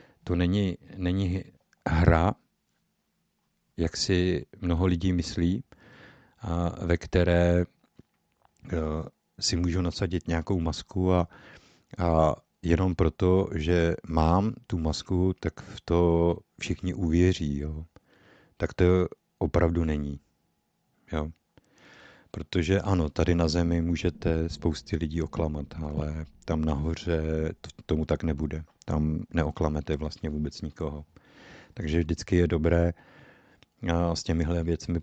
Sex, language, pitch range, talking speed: male, Czech, 80-90 Hz, 110 wpm